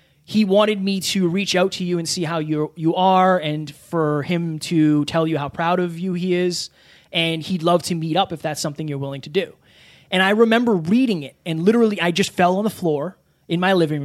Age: 20-39